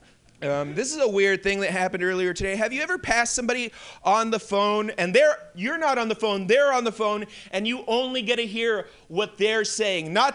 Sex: male